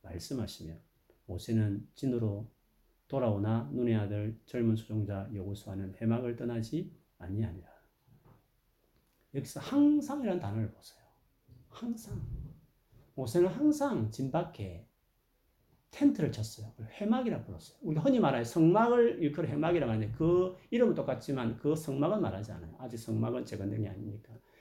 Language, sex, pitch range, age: Korean, male, 110-155 Hz, 40-59